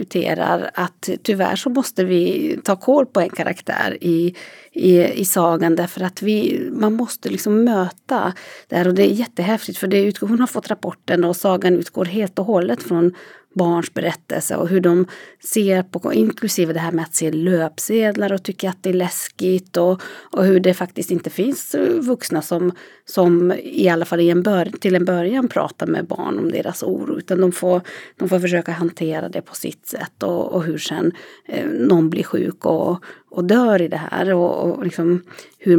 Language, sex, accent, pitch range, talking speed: Swedish, female, native, 175-205 Hz, 190 wpm